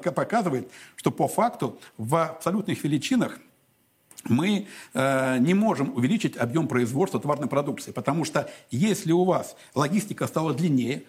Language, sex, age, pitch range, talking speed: Russian, male, 60-79, 150-195 Hz, 130 wpm